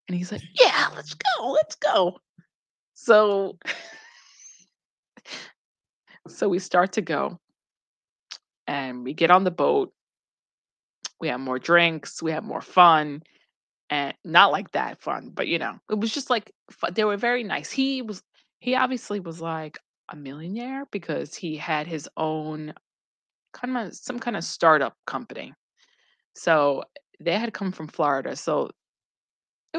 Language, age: English, 20-39